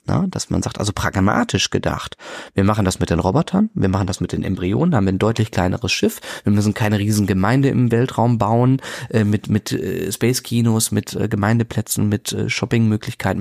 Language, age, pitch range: German, 30-49, 105-125 Hz